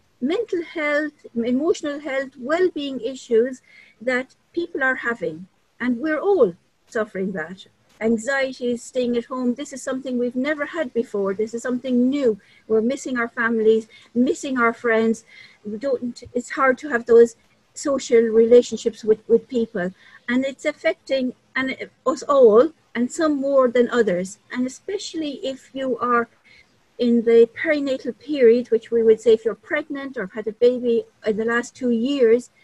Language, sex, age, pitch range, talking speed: English, female, 50-69, 230-275 Hz, 160 wpm